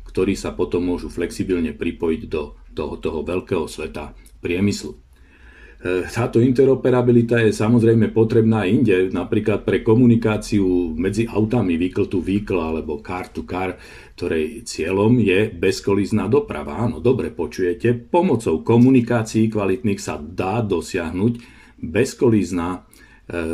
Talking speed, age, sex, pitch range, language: 110 wpm, 50-69, male, 95-115 Hz, Slovak